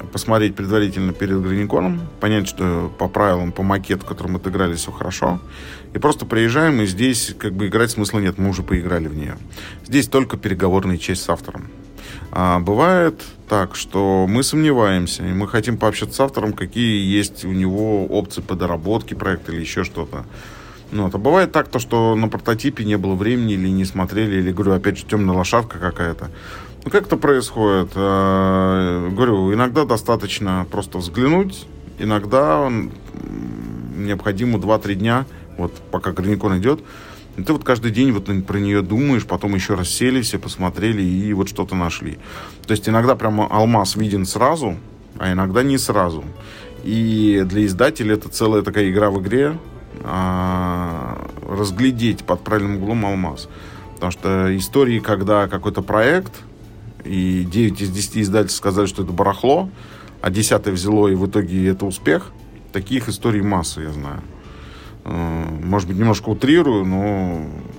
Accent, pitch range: native, 95-110 Hz